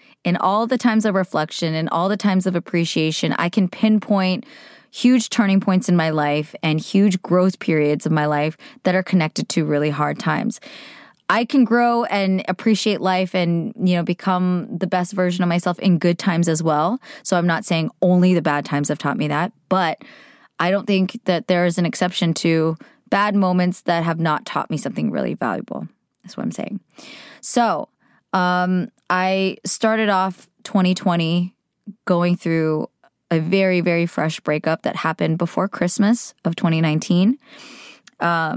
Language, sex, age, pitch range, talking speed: English, female, 20-39, 170-200 Hz, 170 wpm